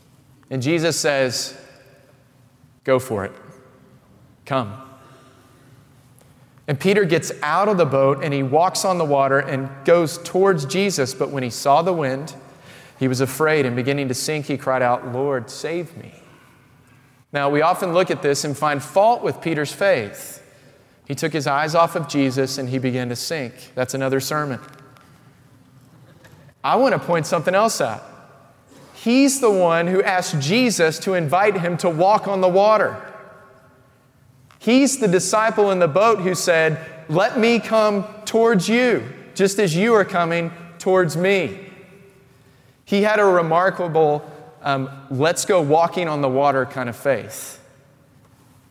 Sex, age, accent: male, 30-49, American